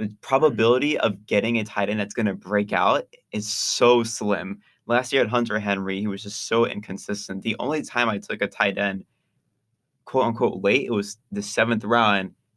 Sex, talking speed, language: male, 195 wpm, English